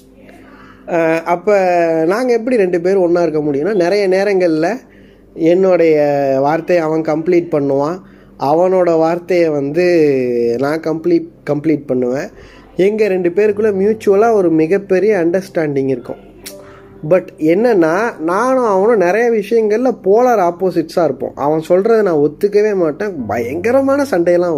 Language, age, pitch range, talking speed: Tamil, 20-39, 150-200 Hz, 110 wpm